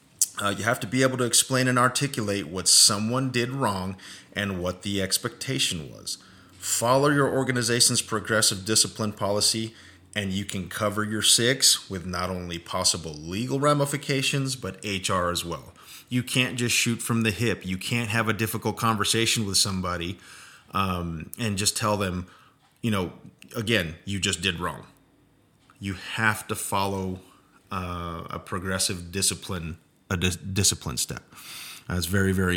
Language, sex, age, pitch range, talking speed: English, male, 30-49, 95-125 Hz, 155 wpm